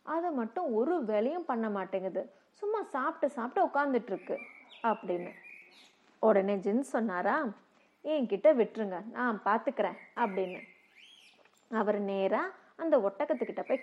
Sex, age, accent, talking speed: female, 30-49, native, 110 wpm